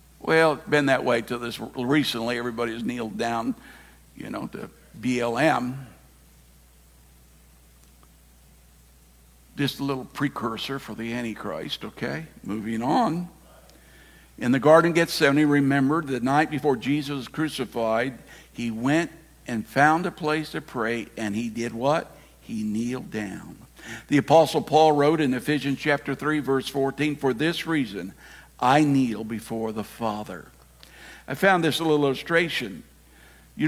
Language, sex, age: English, male, 60-79